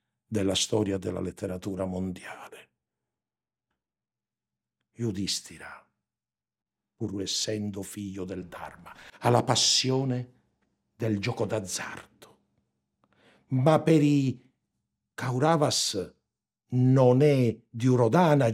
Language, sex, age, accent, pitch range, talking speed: Italian, male, 60-79, native, 90-130 Hz, 80 wpm